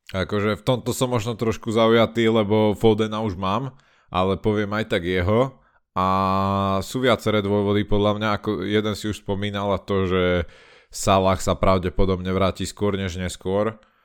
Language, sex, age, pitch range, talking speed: Slovak, male, 20-39, 90-105 Hz, 160 wpm